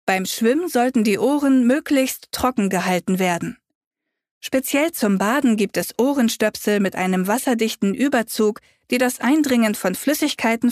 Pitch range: 205-270 Hz